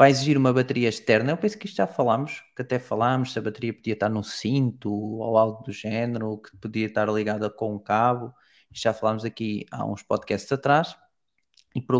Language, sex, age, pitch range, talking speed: Portuguese, male, 20-39, 110-130 Hz, 205 wpm